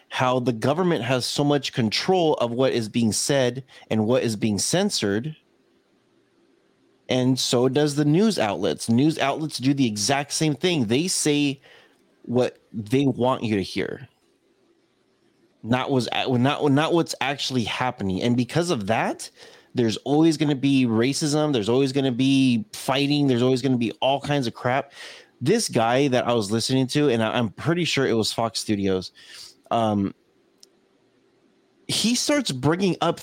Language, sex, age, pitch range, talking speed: English, male, 20-39, 120-150 Hz, 165 wpm